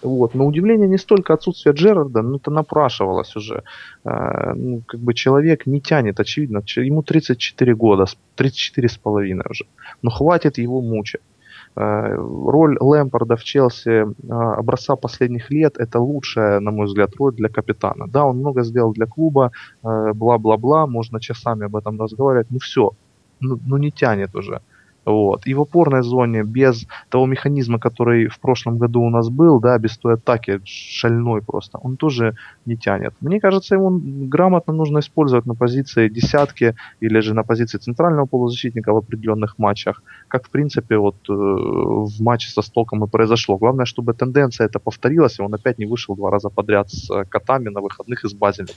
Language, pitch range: Russian, 110-140 Hz